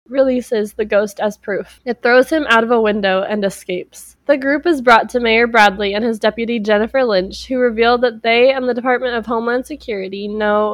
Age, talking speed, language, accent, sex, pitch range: 20-39, 205 wpm, English, American, female, 215-265 Hz